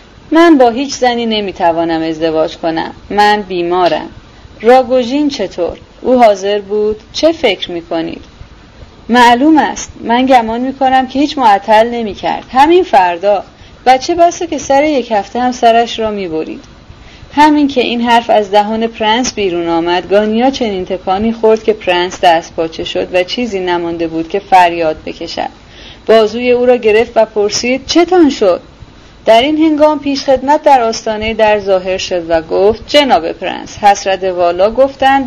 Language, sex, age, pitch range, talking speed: Persian, female, 30-49, 180-255 Hz, 155 wpm